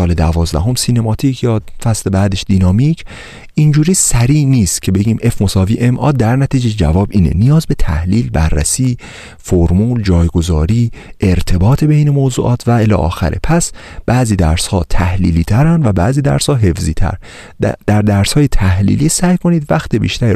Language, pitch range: Persian, 90-135 Hz